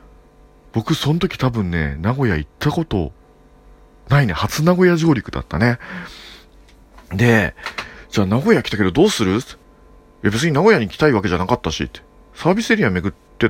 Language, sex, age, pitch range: Japanese, male, 40-59, 105-175 Hz